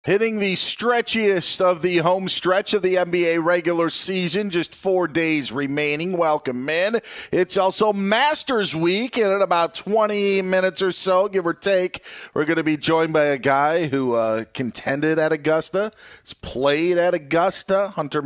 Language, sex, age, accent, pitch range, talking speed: English, male, 40-59, American, 110-170 Hz, 165 wpm